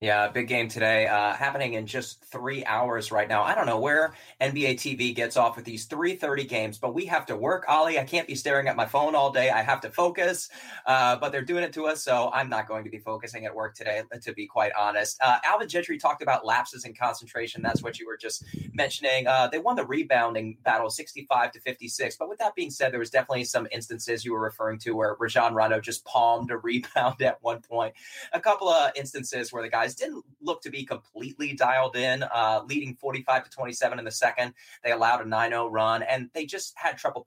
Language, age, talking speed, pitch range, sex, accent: English, 20-39, 230 wpm, 115-150 Hz, male, American